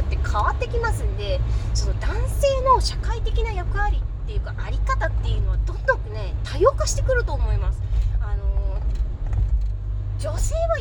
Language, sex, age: Japanese, female, 20-39